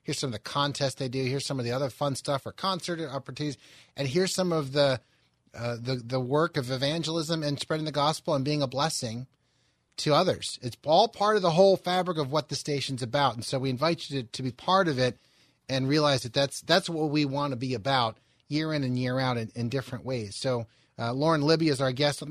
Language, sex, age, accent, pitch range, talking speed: English, male, 30-49, American, 125-150 Hz, 240 wpm